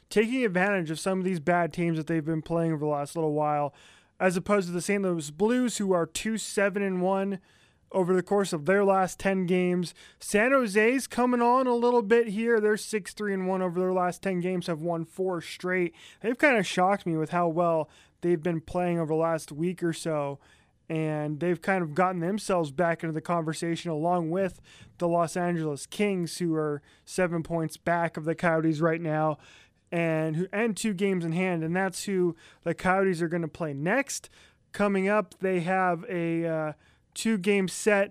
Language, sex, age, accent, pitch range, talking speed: English, male, 20-39, American, 165-195 Hz, 190 wpm